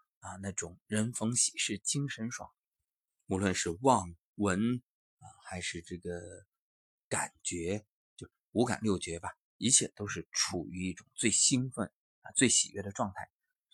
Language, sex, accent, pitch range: Chinese, male, native, 90-145 Hz